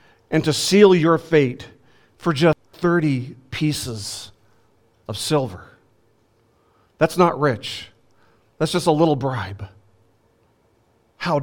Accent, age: American, 40-59